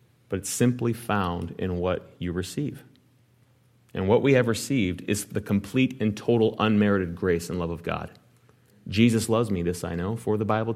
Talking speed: 180 wpm